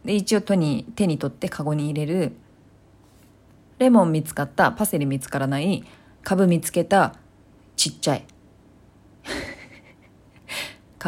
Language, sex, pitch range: Japanese, female, 140-230 Hz